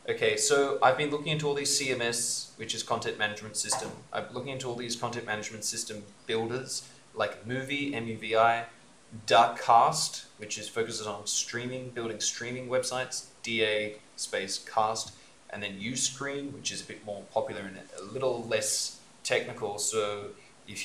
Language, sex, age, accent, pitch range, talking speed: English, male, 20-39, Australian, 110-135 Hz, 155 wpm